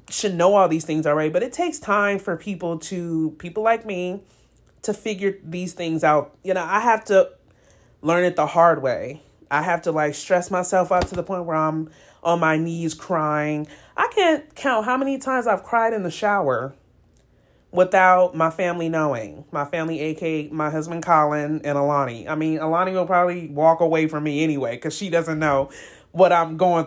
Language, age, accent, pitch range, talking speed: English, 30-49, American, 155-180 Hz, 195 wpm